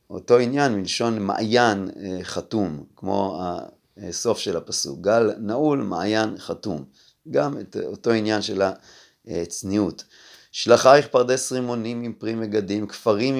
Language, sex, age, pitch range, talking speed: Hebrew, male, 30-49, 95-120 Hz, 115 wpm